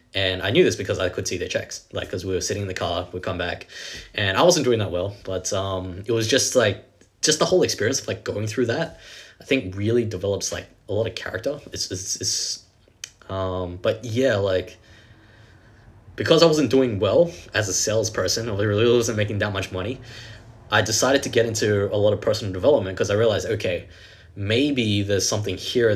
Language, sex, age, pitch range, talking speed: English, male, 20-39, 95-110 Hz, 210 wpm